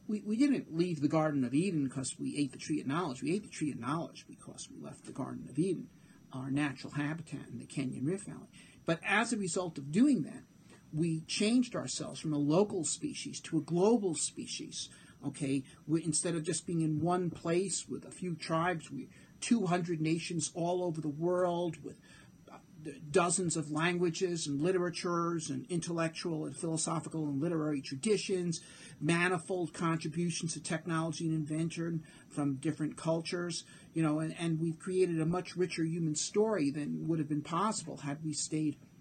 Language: English